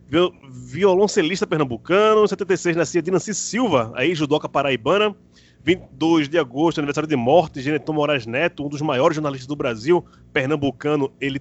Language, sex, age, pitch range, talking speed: Portuguese, male, 20-39, 150-210 Hz, 140 wpm